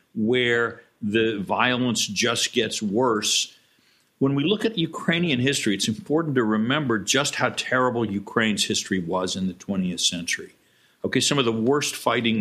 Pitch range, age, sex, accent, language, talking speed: 100-120 Hz, 50-69, male, American, English, 155 wpm